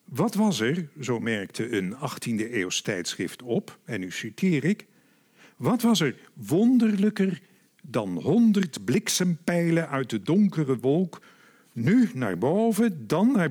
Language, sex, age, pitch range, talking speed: Dutch, male, 50-69, 145-210 Hz, 130 wpm